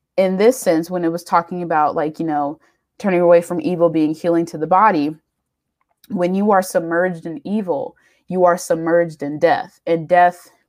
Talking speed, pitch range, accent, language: 185 wpm, 165-190 Hz, American, English